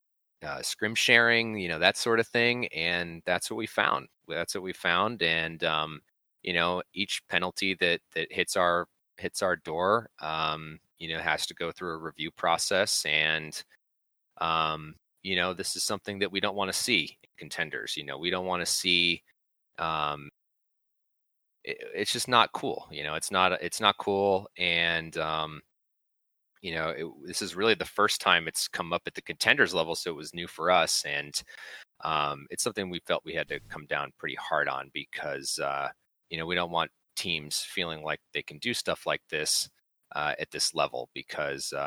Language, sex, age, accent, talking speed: English, male, 30-49, American, 190 wpm